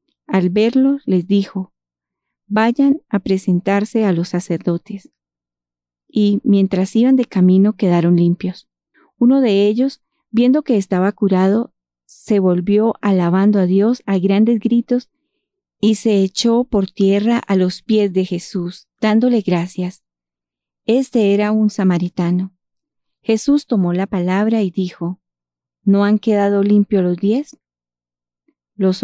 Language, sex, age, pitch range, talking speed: Spanish, female, 30-49, 175-225 Hz, 125 wpm